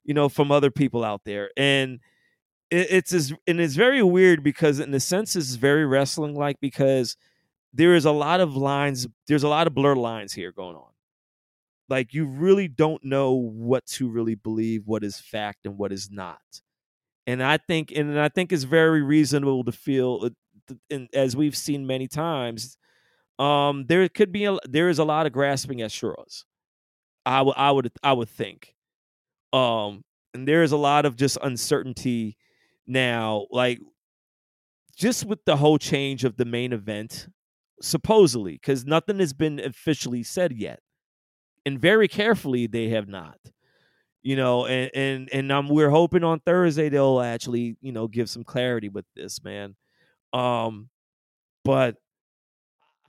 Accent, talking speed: American, 165 wpm